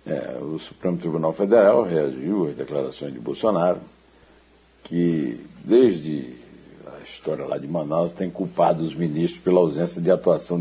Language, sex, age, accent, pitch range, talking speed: Portuguese, male, 60-79, Brazilian, 80-100 Hz, 135 wpm